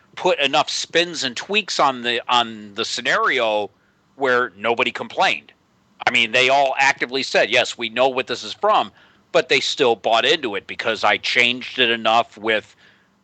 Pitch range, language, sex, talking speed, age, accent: 115-150 Hz, English, male, 170 wpm, 40-59, American